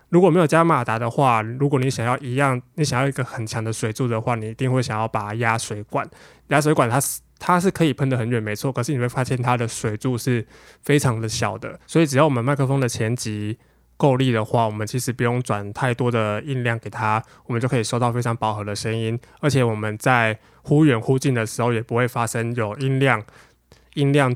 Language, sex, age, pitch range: Chinese, male, 20-39, 115-135 Hz